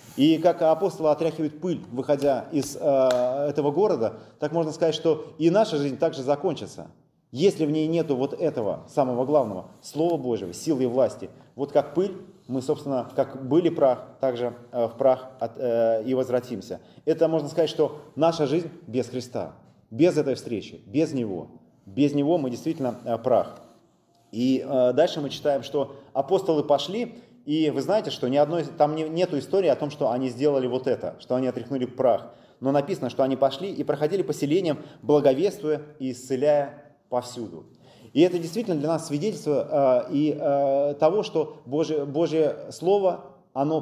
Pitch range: 130-160 Hz